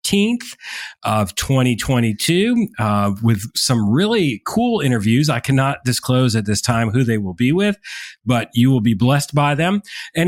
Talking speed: 160 wpm